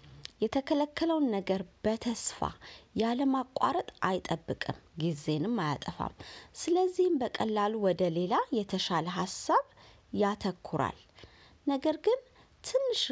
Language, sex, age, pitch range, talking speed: Amharic, female, 30-49, 180-265 Hz, 80 wpm